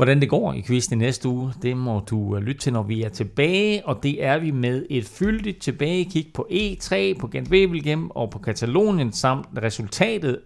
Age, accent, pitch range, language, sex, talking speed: 40-59, native, 120-155 Hz, Danish, male, 190 wpm